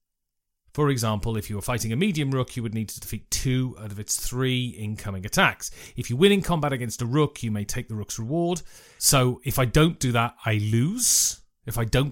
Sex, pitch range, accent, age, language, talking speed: male, 110-145 Hz, British, 30-49, English, 230 wpm